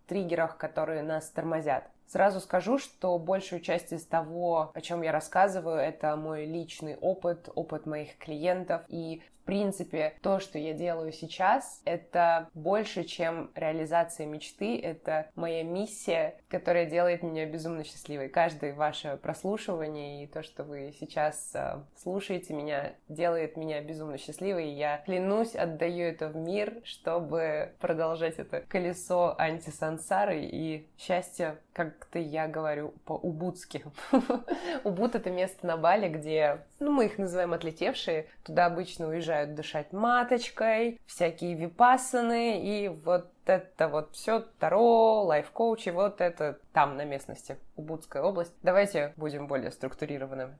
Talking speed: 130 wpm